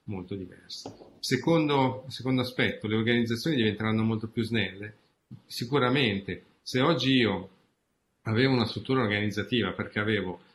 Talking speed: 120 wpm